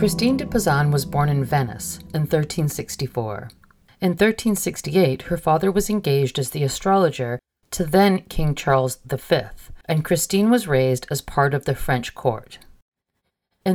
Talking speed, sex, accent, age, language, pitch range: 150 wpm, female, American, 40-59, English, 130-175 Hz